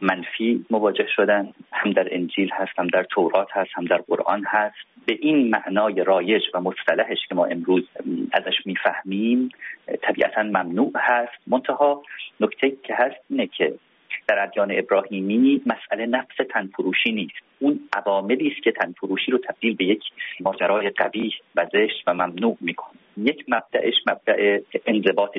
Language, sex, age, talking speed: Persian, male, 40-59, 150 wpm